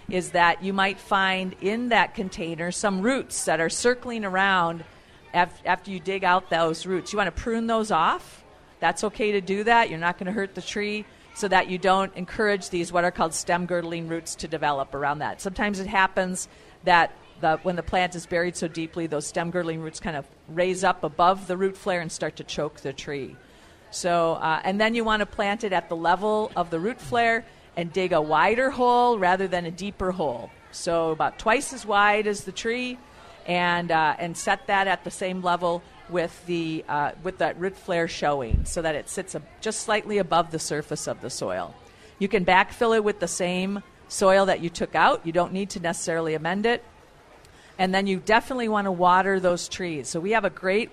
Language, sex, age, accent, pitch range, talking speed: English, female, 50-69, American, 170-205 Hz, 210 wpm